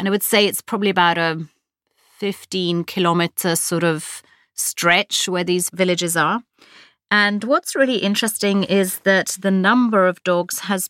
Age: 30-49